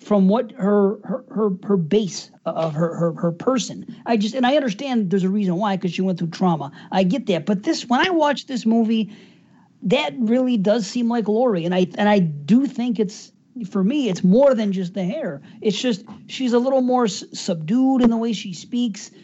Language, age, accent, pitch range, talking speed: English, 40-59, American, 185-235 Hz, 220 wpm